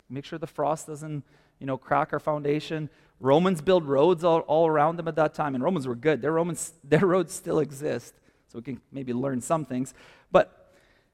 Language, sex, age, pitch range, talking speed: English, male, 30-49, 140-175 Hz, 200 wpm